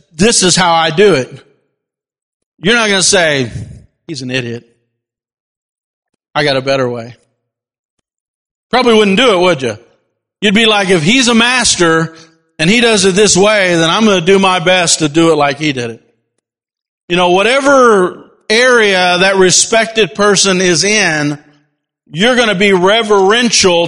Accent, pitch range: American, 150-205 Hz